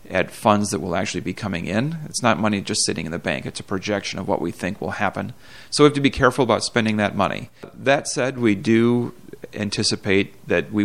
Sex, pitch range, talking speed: male, 100-115 Hz, 230 wpm